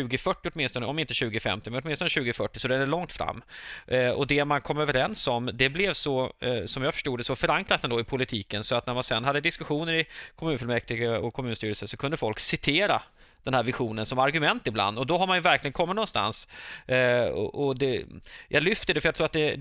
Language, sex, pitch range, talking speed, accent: Swedish, male, 125-150 Hz, 215 wpm, native